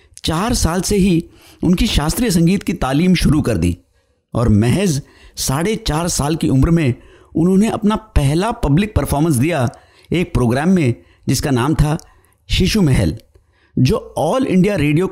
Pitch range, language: 120-180 Hz, Hindi